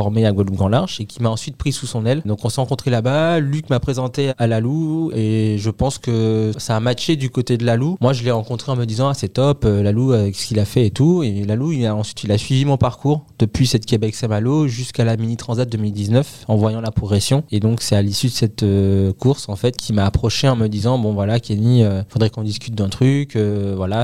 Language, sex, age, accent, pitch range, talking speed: French, male, 20-39, French, 110-130 Hz, 255 wpm